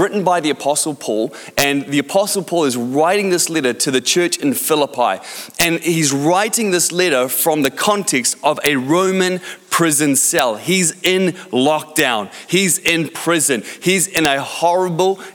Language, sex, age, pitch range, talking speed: English, male, 30-49, 140-180 Hz, 160 wpm